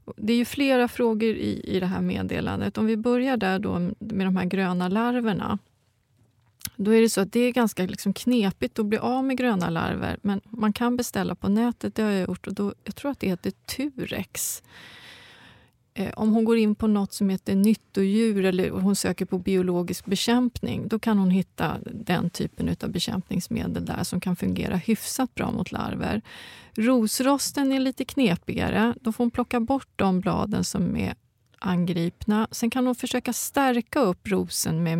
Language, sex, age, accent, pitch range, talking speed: Swedish, female, 30-49, native, 185-235 Hz, 185 wpm